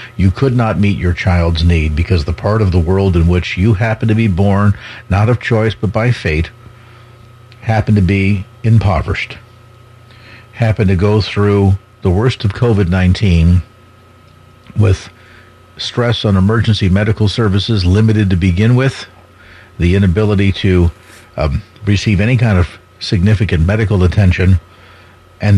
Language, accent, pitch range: English, American, 100-115 Hz